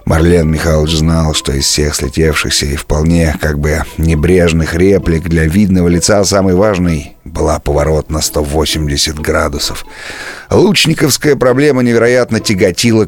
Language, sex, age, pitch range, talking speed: Russian, male, 30-49, 85-110 Hz, 125 wpm